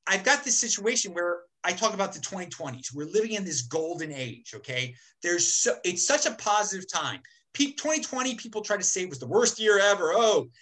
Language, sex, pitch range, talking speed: English, male, 195-300 Hz, 210 wpm